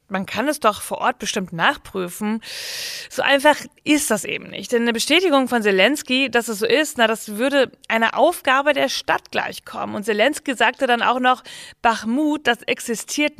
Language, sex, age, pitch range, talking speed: German, female, 30-49, 220-275 Hz, 180 wpm